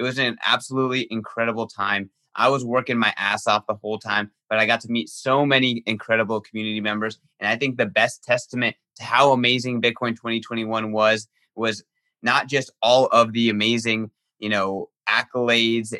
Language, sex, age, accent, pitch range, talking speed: English, male, 20-39, American, 110-125 Hz, 175 wpm